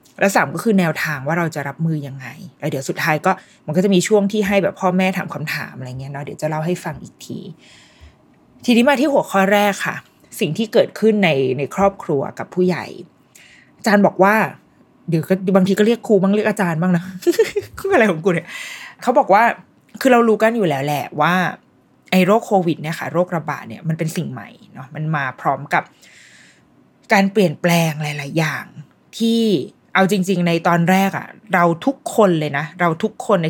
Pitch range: 155-200 Hz